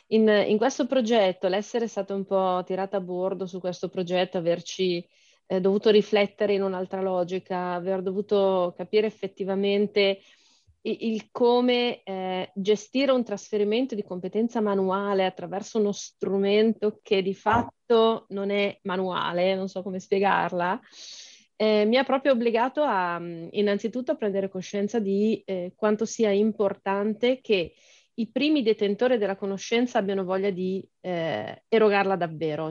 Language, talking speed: Italian, 140 wpm